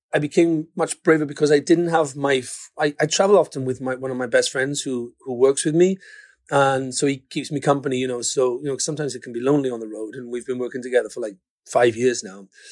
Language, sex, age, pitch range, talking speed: English, male, 30-49, 130-160 Hz, 260 wpm